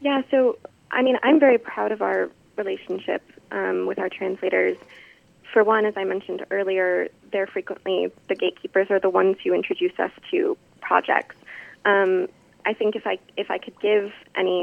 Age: 20-39